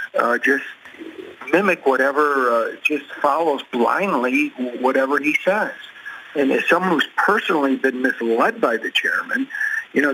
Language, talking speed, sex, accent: English, 135 wpm, male, American